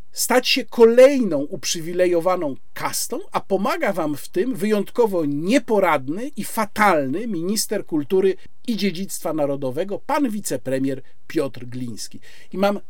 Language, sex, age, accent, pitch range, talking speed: Polish, male, 50-69, native, 145-205 Hz, 115 wpm